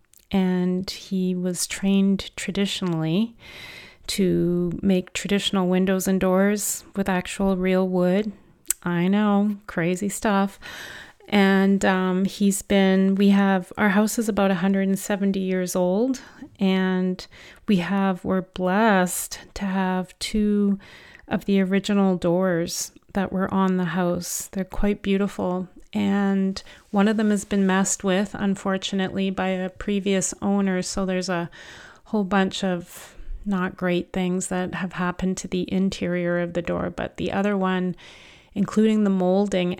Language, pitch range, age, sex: English, 180-200 Hz, 30-49, female